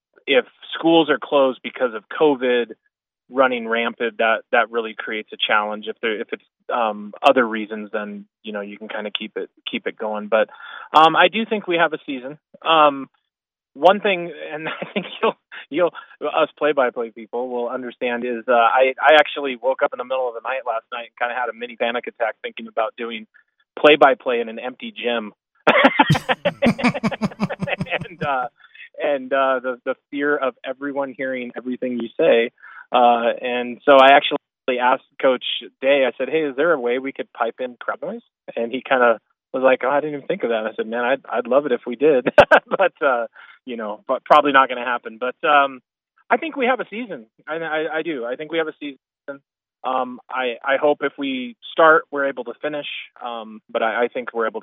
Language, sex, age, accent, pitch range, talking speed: English, male, 30-49, American, 120-155 Hz, 215 wpm